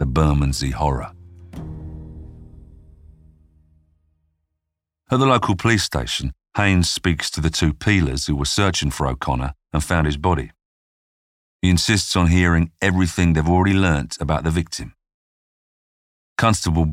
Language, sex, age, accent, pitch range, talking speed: English, male, 40-59, British, 75-95 Hz, 125 wpm